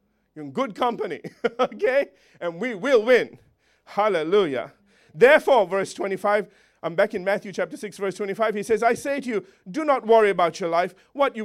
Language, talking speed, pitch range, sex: English, 185 wpm, 195-270 Hz, male